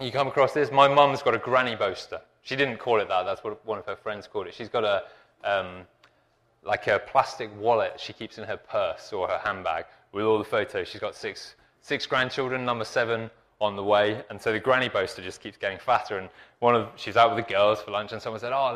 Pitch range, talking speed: 105-140 Hz, 245 wpm